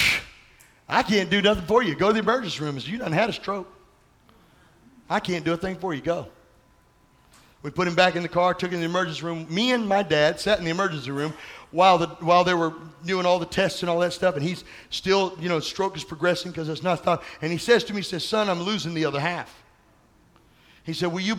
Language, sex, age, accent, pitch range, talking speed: English, male, 50-69, American, 155-190 Hz, 255 wpm